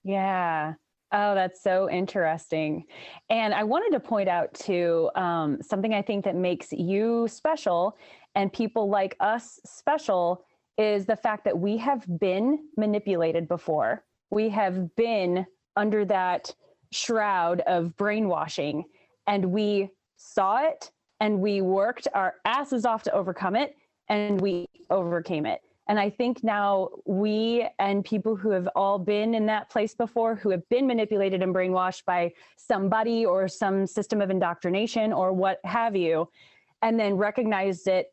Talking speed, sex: 150 wpm, female